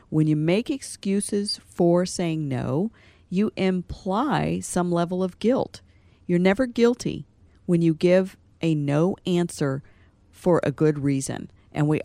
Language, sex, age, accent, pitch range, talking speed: English, female, 50-69, American, 150-190 Hz, 140 wpm